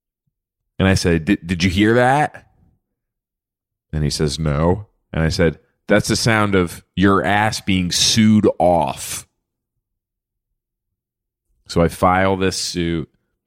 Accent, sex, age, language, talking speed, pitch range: American, male, 30-49, English, 125 wpm, 85-105 Hz